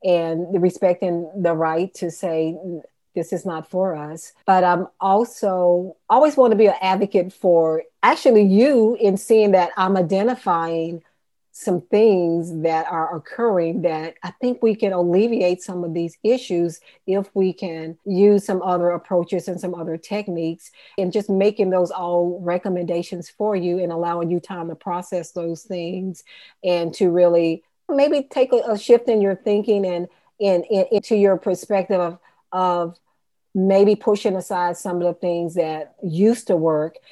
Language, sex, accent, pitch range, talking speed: English, female, American, 170-195 Hz, 160 wpm